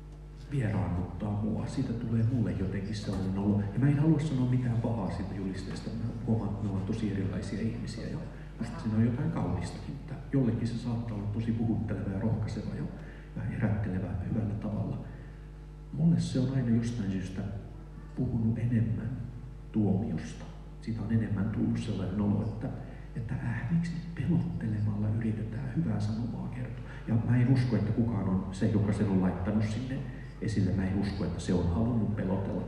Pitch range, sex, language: 105-130 Hz, male, Finnish